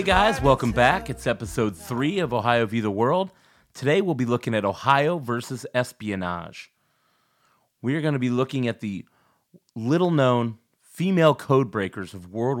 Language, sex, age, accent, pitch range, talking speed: English, male, 30-49, American, 105-130 Hz, 155 wpm